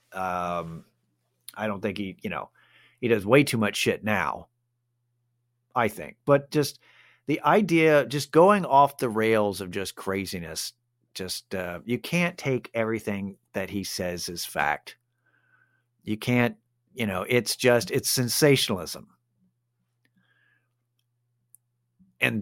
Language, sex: English, male